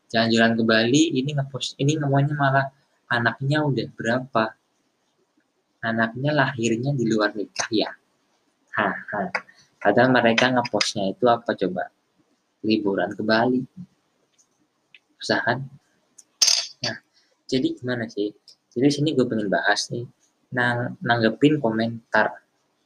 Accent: native